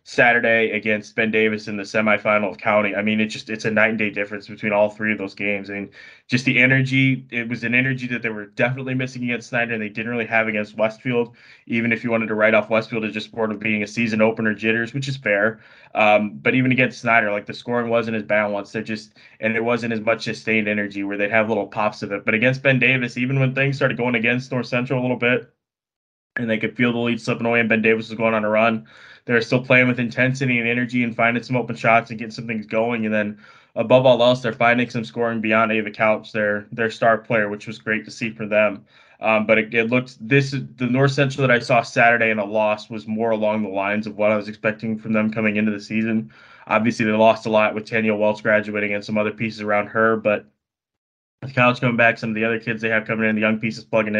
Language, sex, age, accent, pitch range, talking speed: English, male, 20-39, American, 110-120 Hz, 260 wpm